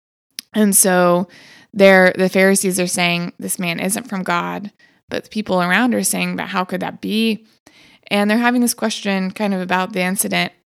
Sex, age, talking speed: female, 20-39, 180 wpm